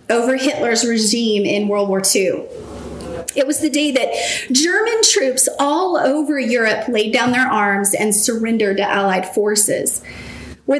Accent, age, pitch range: American, 30-49, 235-330 Hz